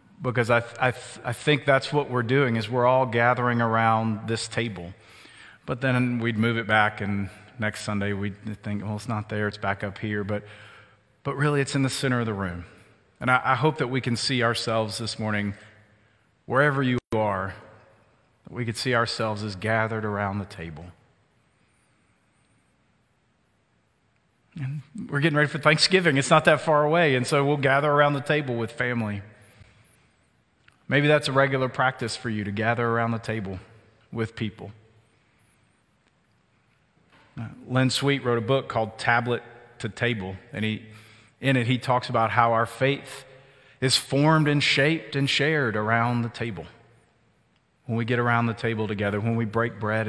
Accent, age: American, 40-59